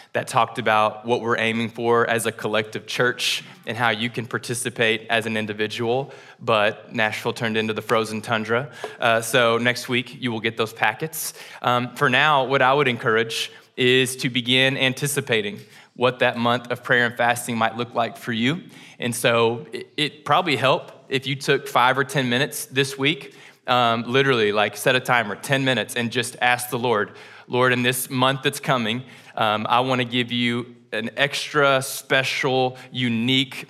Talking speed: 180 wpm